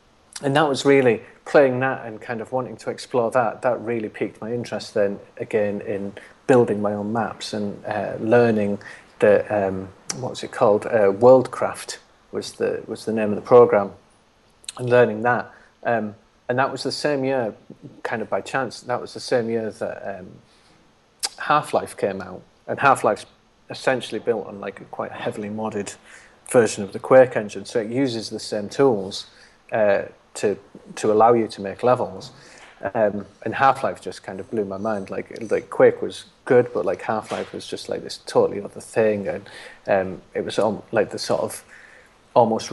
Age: 40-59